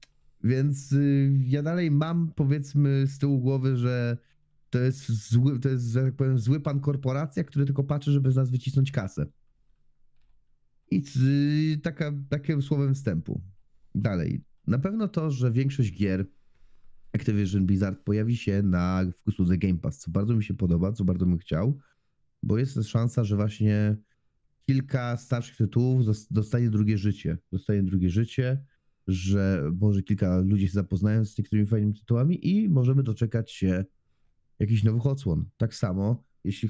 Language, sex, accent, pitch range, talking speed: Polish, male, native, 95-130 Hz, 155 wpm